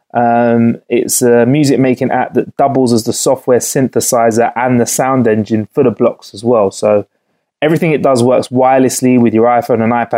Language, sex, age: English, male, 20-39